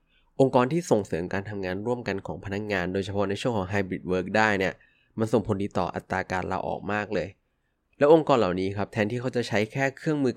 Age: 20-39